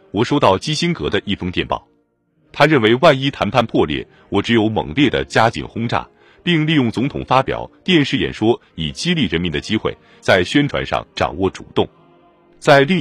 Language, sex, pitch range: Chinese, male, 95-140 Hz